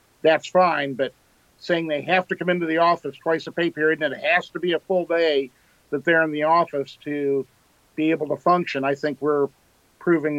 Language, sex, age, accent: English, male, 50-69, American